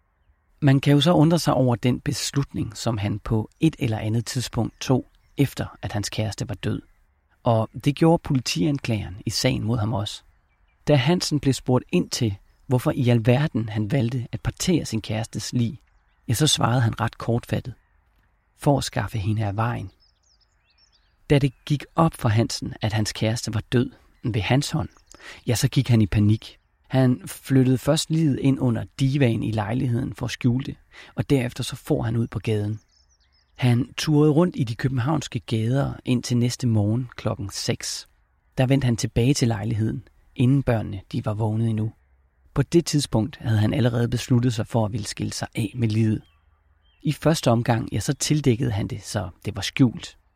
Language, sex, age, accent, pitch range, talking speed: Danish, male, 40-59, native, 105-135 Hz, 180 wpm